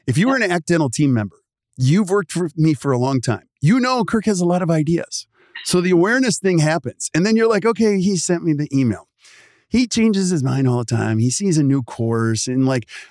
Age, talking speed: 40-59, 245 wpm